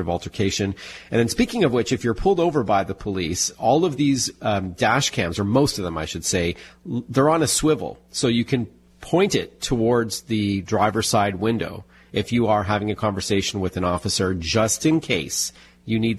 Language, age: English, 30-49